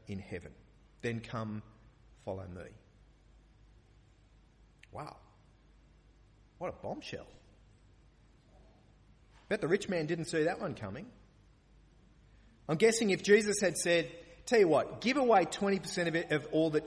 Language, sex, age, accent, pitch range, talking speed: English, male, 30-49, Australian, 120-175 Hz, 125 wpm